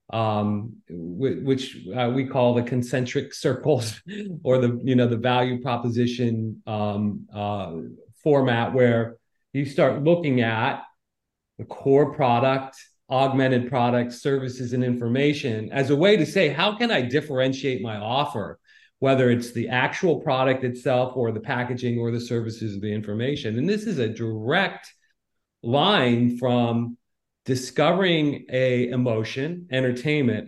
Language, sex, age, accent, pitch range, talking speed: English, male, 40-59, American, 120-145 Hz, 135 wpm